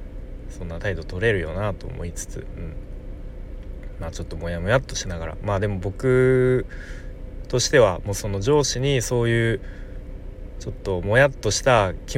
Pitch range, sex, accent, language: 95-135 Hz, male, native, Japanese